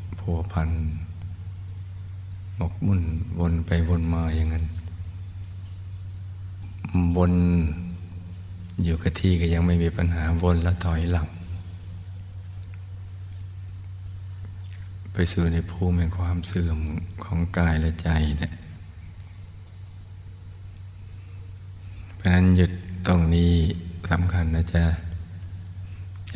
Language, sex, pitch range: Thai, male, 85-95 Hz